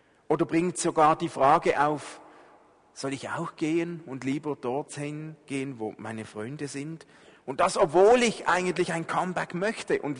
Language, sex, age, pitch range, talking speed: German, male, 40-59, 125-170 Hz, 160 wpm